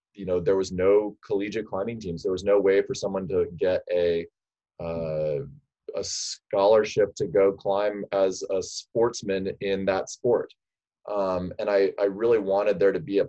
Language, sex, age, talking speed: English, male, 20-39, 175 wpm